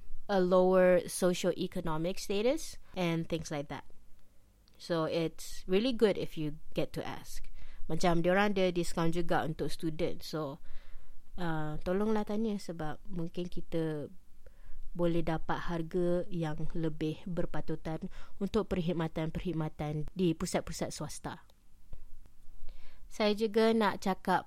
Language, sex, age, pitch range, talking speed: Malay, female, 20-39, 160-180 Hz, 115 wpm